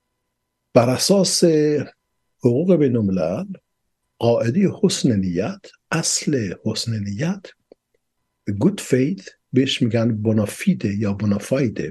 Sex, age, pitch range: male, 60-79, 100-135 Hz